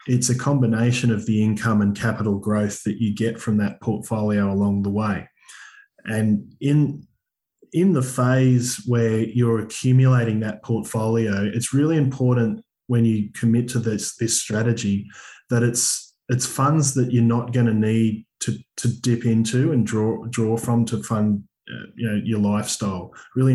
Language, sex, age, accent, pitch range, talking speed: English, male, 20-39, Australian, 110-125 Hz, 160 wpm